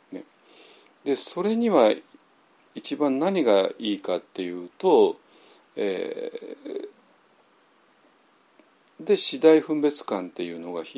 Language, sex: Japanese, male